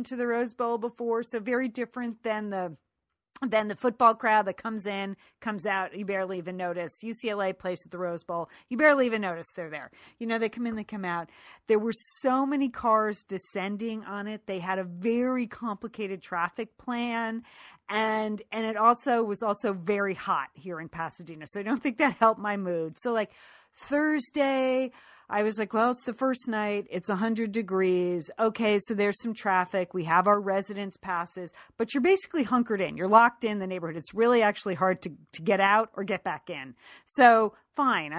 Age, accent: 40-59, American